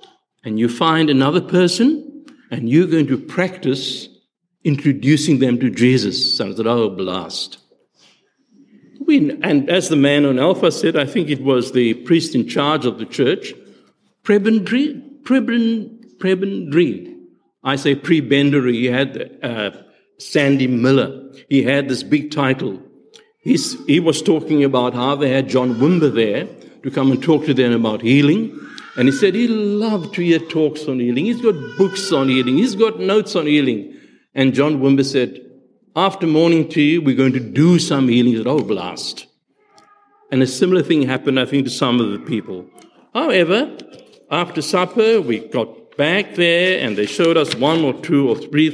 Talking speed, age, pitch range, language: 170 wpm, 60-79, 130-195 Hz, English